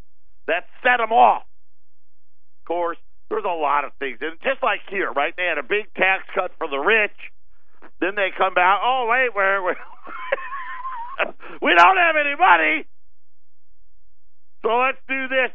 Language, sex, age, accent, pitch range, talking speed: English, male, 50-69, American, 110-185 Hz, 165 wpm